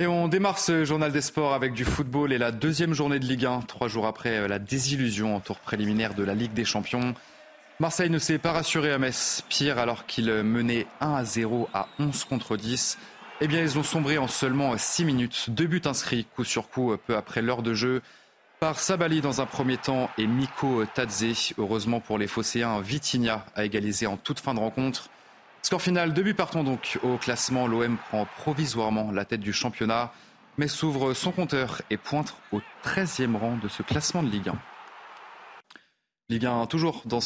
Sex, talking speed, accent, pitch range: male, 200 wpm, French, 110-145 Hz